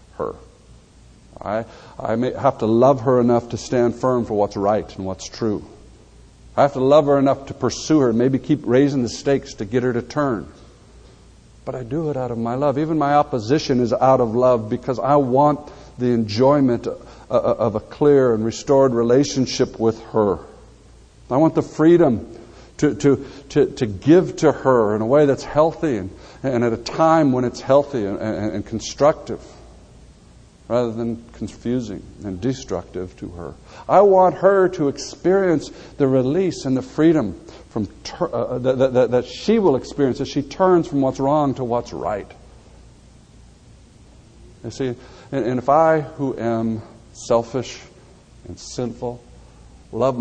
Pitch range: 115-140 Hz